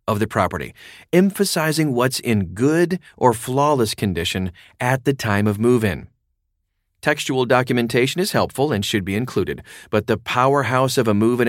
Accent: American